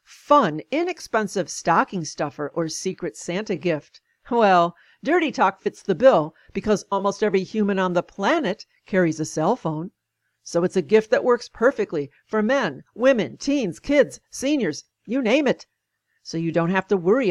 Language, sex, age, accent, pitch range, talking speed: English, female, 50-69, American, 180-240 Hz, 165 wpm